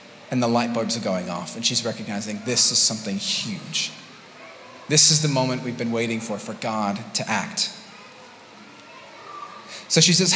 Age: 30-49